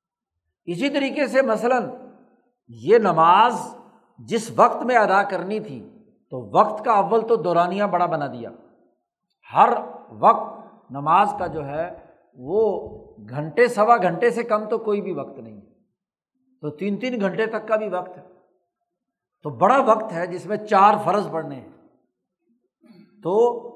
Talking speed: 145 wpm